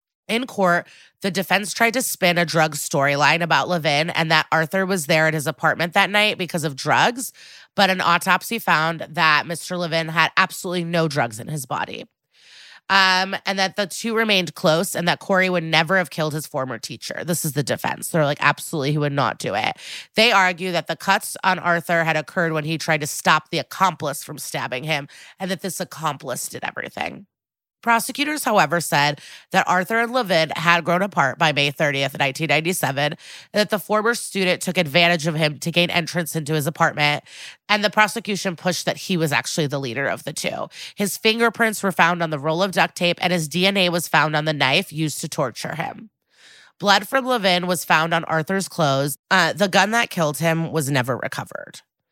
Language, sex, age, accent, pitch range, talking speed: English, female, 30-49, American, 155-195 Hz, 200 wpm